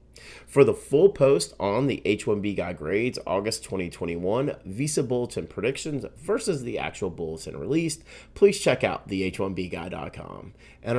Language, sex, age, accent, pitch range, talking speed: English, male, 30-49, American, 95-140 Hz, 135 wpm